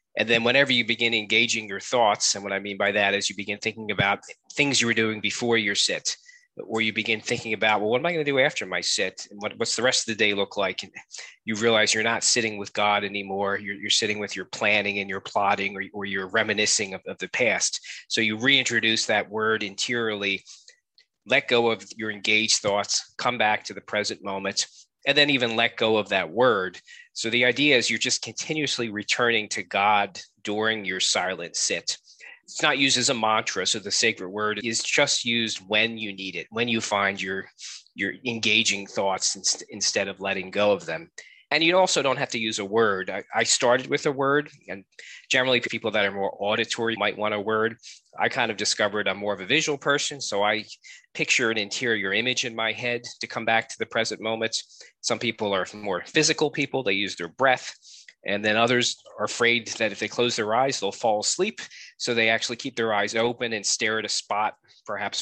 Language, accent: English, American